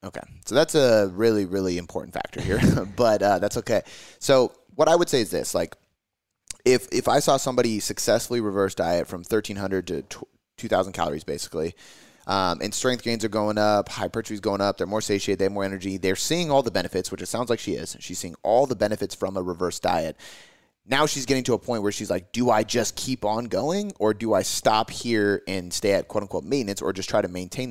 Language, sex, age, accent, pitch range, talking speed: English, male, 30-49, American, 95-125 Hz, 225 wpm